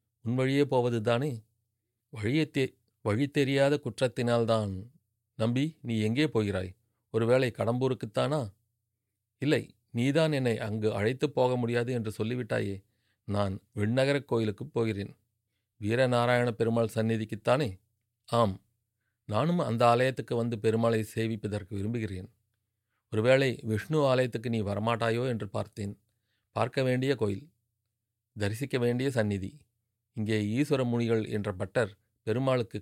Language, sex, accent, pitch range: Tamil, male, native, 110-125 Hz